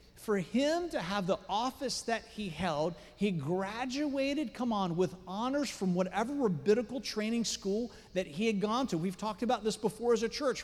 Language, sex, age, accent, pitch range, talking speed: English, male, 40-59, American, 150-215 Hz, 185 wpm